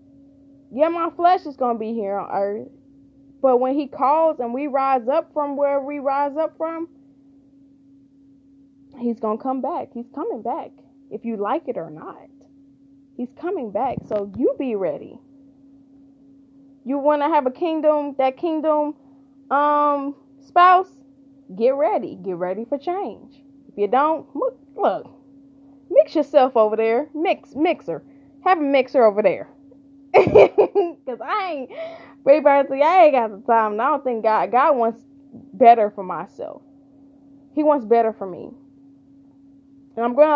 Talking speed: 155 wpm